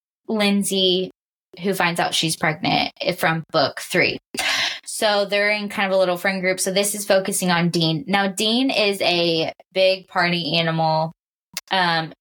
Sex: female